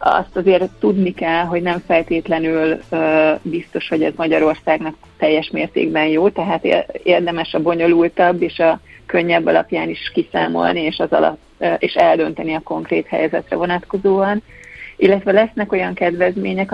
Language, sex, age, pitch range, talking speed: Hungarian, female, 30-49, 160-180 Hz, 135 wpm